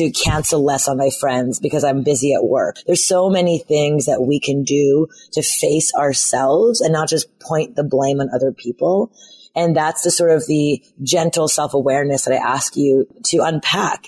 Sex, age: female, 30-49